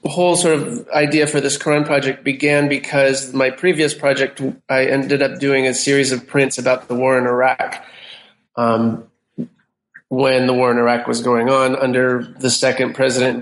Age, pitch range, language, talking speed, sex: 30-49, 125-140 Hz, English, 180 wpm, male